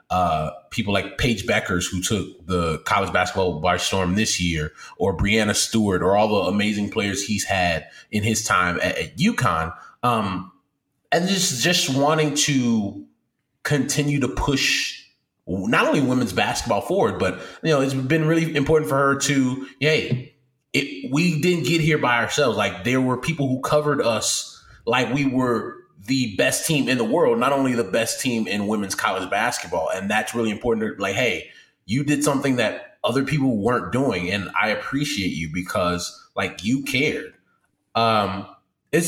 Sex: male